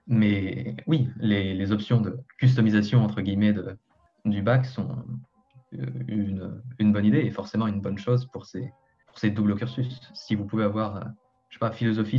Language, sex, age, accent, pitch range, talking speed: French, male, 20-39, French, 105-125 Hz, 190 wpm